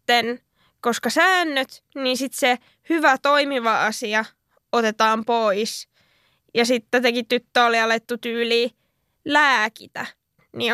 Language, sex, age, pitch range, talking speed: Finnish, female, 10-29, 230-270 Hz, 105 wpm